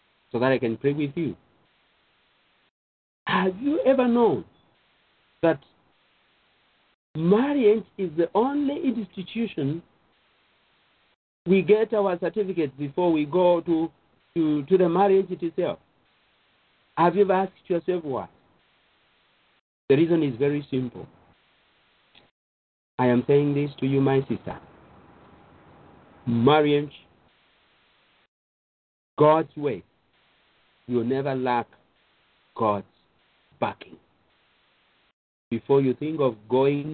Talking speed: 100 wpm